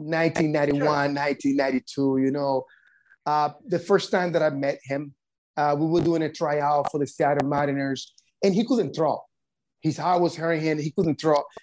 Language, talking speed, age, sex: English, 175 wpm, 30-49, male